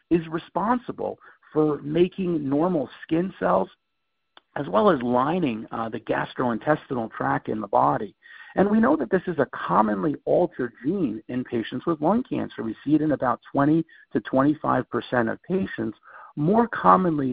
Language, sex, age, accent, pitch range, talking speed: English, male, 50-69, American, 130-175 Hz, 155 wpm